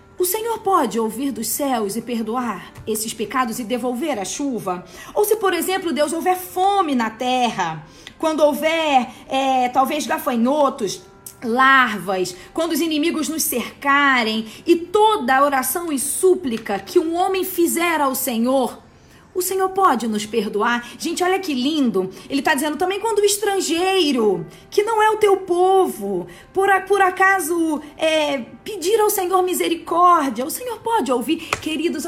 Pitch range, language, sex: 250-370 Hz, Portuguese, female